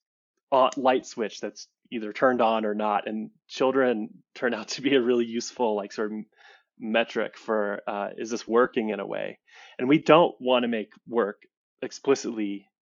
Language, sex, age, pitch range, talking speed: English, male, 20-39, 105-125 Hz, 175 wpm